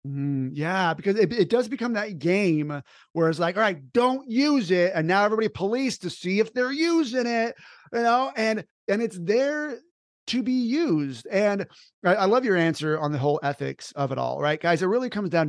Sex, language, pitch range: male, English, 155-215 Hz